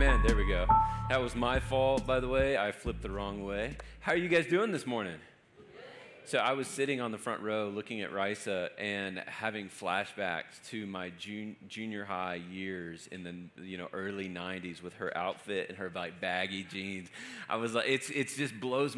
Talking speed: 200 wpm